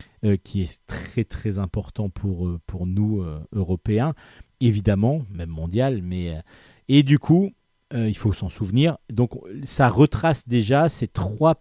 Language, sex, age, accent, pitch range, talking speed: French, male, 40-59, French, 105-135 Hz, 135 wpm